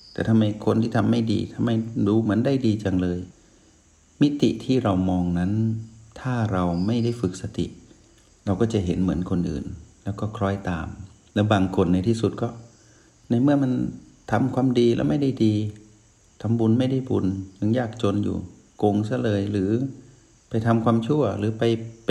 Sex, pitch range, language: male, 95-115 Hz, Thai